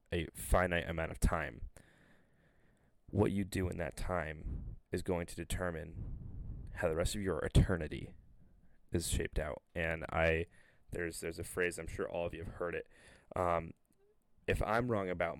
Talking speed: 170 wpm